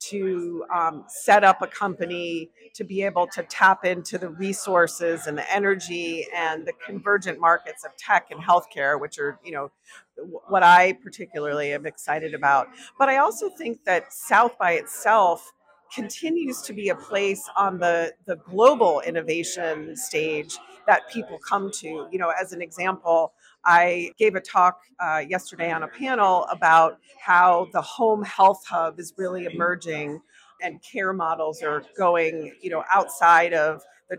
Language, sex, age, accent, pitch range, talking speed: English, female, 40-59, American, 170-210 Hz, 160 wpm